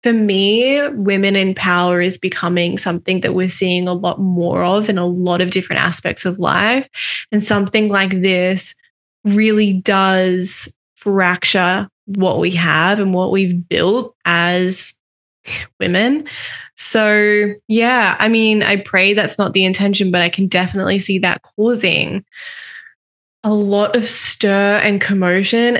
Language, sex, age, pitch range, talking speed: English, female, 10-29, 185-210 Hz, 145 wpm